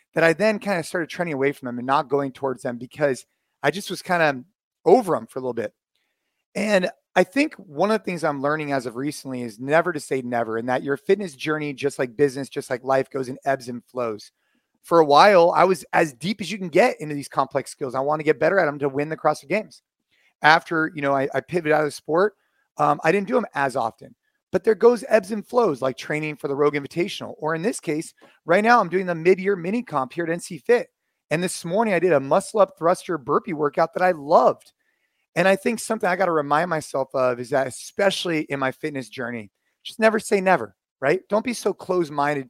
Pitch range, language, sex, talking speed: 135-180 Hz, English, male, 240 wpm